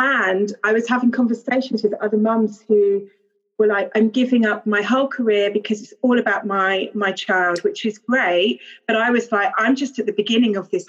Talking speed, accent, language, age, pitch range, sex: 210 wpm, British, English, 30-49, 190-230 Hz, female